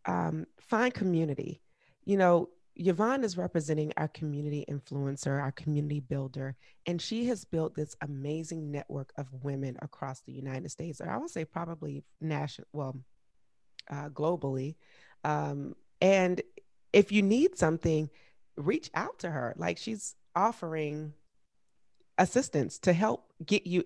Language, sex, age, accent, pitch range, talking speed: English, female, 30-49, American, 145-175 Hz, 135 wpm